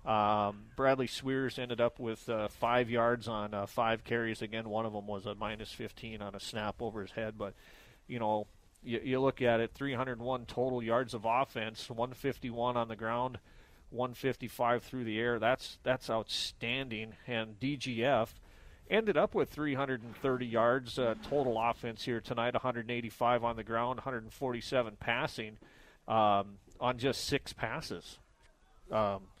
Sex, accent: male, American